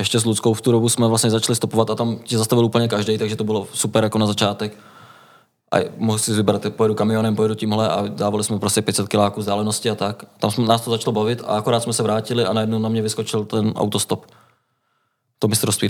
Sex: male